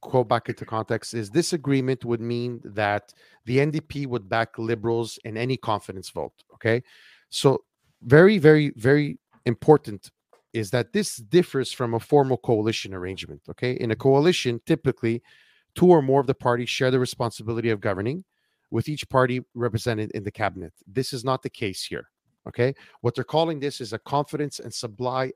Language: English